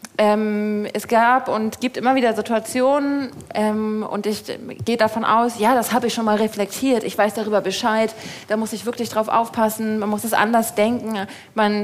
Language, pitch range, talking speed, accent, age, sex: German, 195-230 Hz, 195 wpm, German, 30-49, female